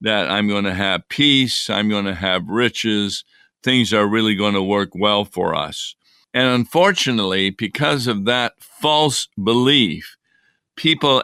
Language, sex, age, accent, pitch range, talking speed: English, male, 50-69, American, 115-140 Hz, 135 wpm